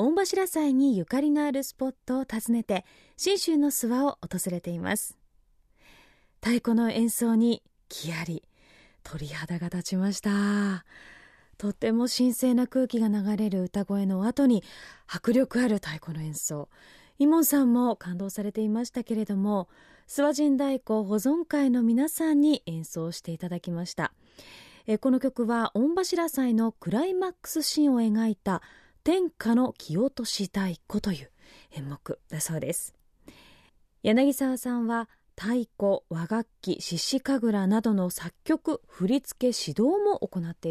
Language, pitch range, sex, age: Japanese, 195-275 Hz, female, 20-39